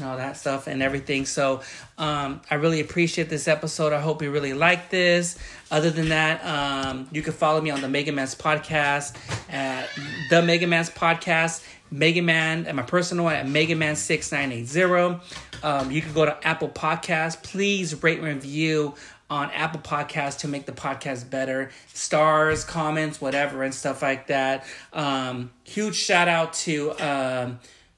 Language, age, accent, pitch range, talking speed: English, 30-49, American, 135-160 Hz, 170 wpm